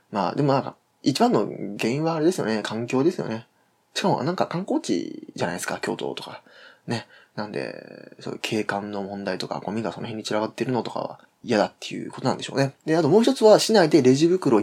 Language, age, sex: Japanese, 20-39, male